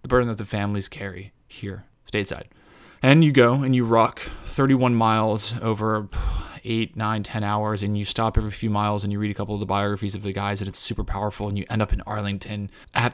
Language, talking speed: English, 225 wpm